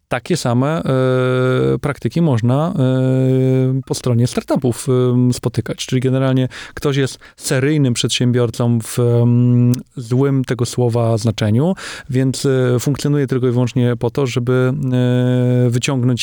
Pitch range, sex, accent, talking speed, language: 125-140 Hz, male, native, 105 wpm, Polish